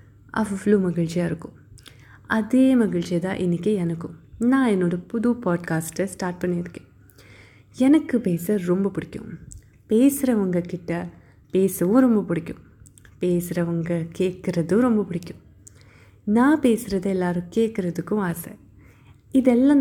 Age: 20-39